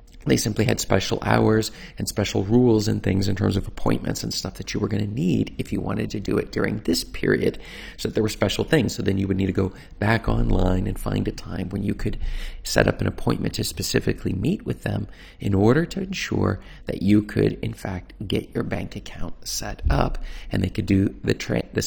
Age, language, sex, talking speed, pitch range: 40-59, English, male, 230 wpm, 95-120 Hz